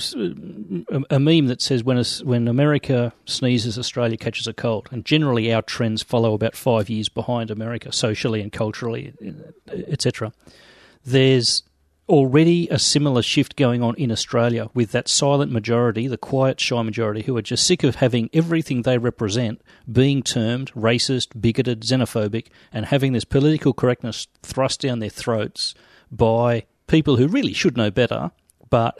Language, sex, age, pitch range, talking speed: English, male, 40-59, 115-135 Hz, 155 wpm